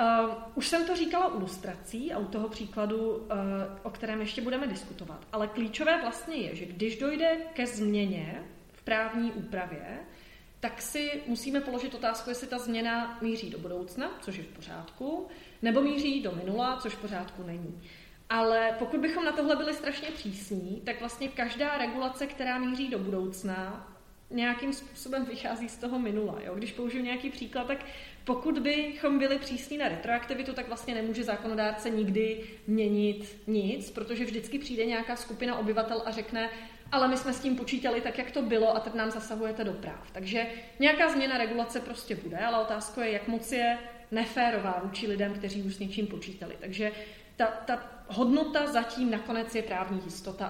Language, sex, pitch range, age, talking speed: Czech, female, 210-255 Hz, 30-49, 170 wpm